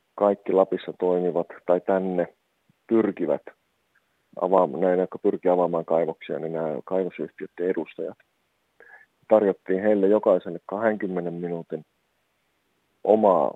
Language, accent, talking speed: Finnish, native, 95 wpm